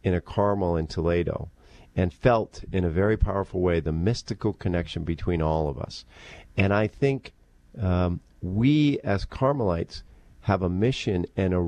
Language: English